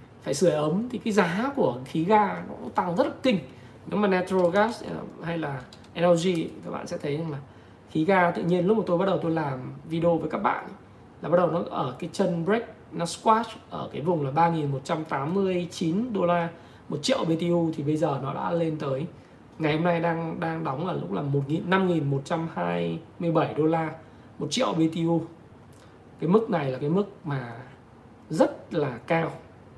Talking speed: 190 wpm